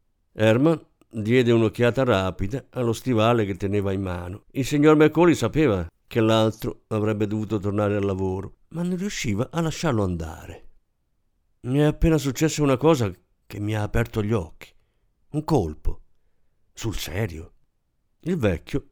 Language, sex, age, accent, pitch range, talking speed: Italian, male, 50-69, native, 100-160 Hz, 145 wpm